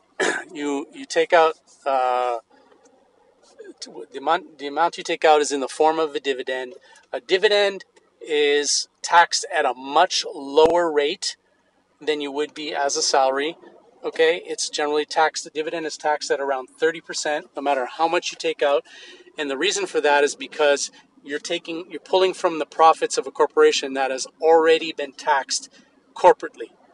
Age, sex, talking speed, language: 40-59, male, 170 wpm, English